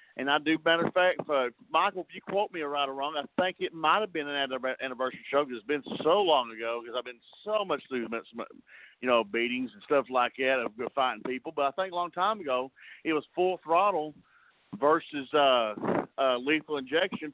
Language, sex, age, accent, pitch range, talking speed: English, male, 50-69, American, 135-185 Hz, 220 wpm